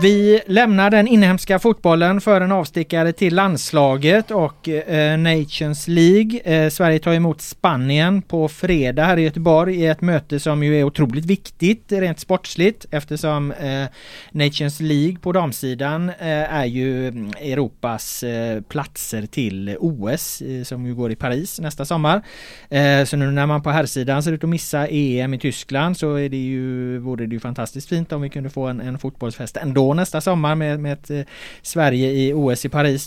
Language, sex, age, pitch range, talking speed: Swedish, male, 30-49, 135-170 Hz, 160 wpm